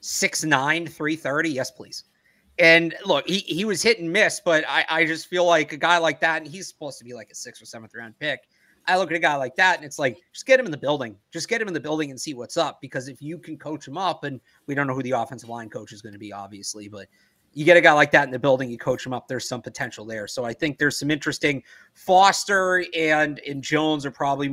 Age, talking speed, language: 30-49, 275 wpm, English